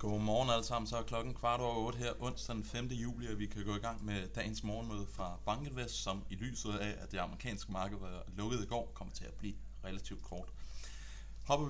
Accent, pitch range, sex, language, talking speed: native, 95-115 Hz, male, Danish, 230 wpm